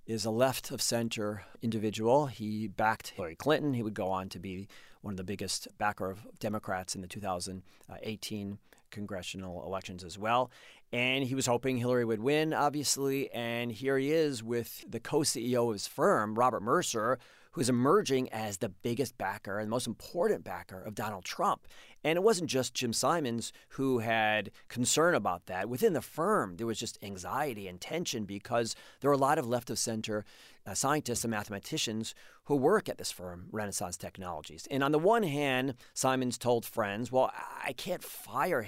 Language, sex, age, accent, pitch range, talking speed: English, male, 30-49, American, 105-130 Hz, 180 wpm